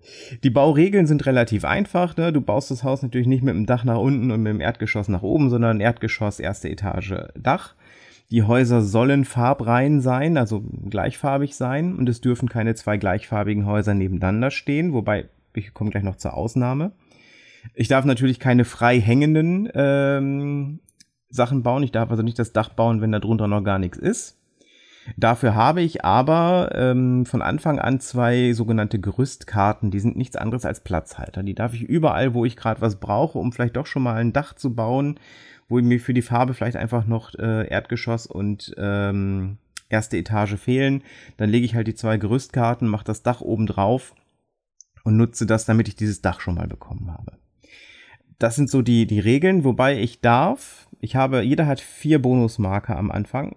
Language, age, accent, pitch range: German, 30-49, German, 110-130 Hz